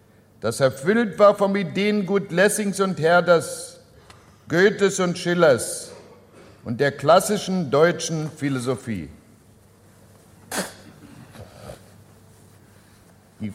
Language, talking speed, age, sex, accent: German, 75 wpm, 60-79, male, German